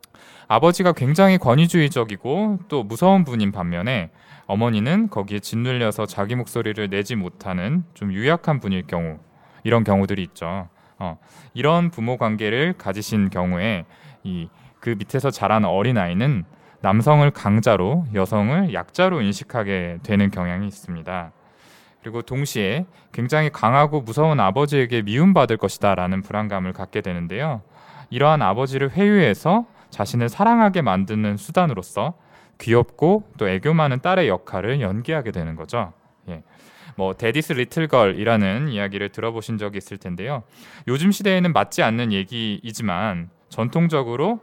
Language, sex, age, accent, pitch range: Korean, male, 20-39, native, 100-160 Hz